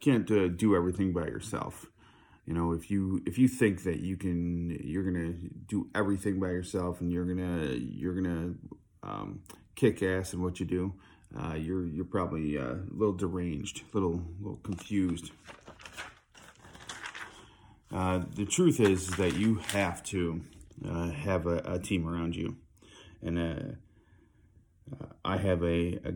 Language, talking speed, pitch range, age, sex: English, 155 wpm, 85-95 Hz, 30-49, male